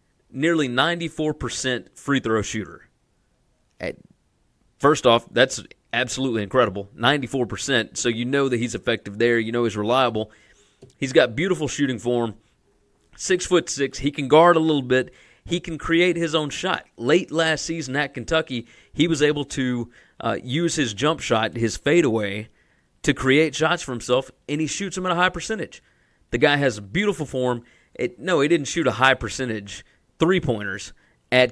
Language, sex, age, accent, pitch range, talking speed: English, male, 30-49, American, 115-150 Hz, 175 wpm